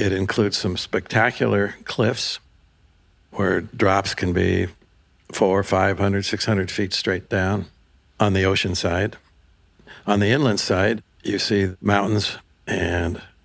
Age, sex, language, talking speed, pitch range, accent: 60-79, male, English, 130 wpm, 90-105 Hz, American